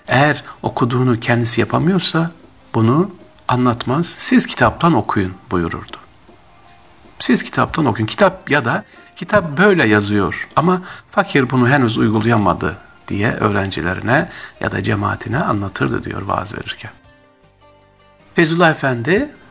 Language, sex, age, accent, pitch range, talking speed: Turkish, male, 50-69, native, 105-150 Hz, 110 wpm